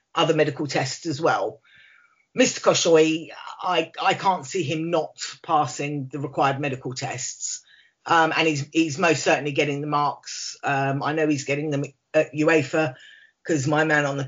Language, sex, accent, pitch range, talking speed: English, female, British, 150-180 Hz, 165 wpm